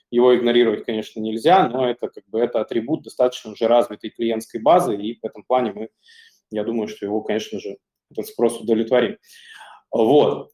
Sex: male